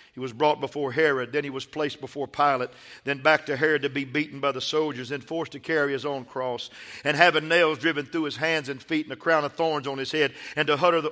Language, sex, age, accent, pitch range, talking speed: English, male, 50-69, American, 130-160 Hz, 260 wpm